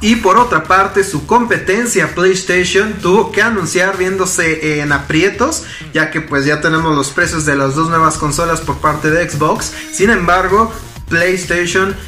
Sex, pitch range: male, 155-195 Hz